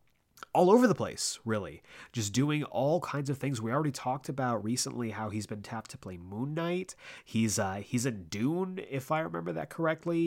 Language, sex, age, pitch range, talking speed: English, male, 30-49, 100-135 Hz, 200 wpm